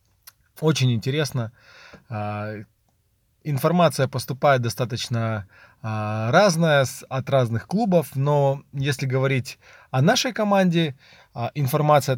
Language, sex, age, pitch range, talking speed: Russian, male, 20-39, 120-145 Hz, 80 wpm